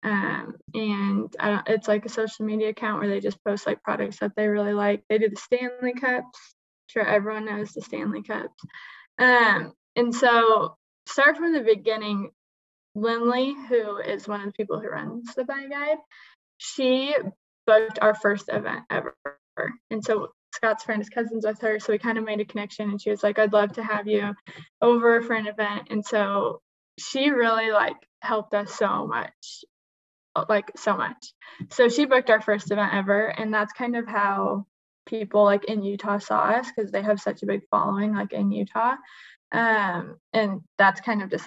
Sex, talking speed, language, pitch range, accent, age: female, 185 wpm, English, 205-230 Hz, American, 10-29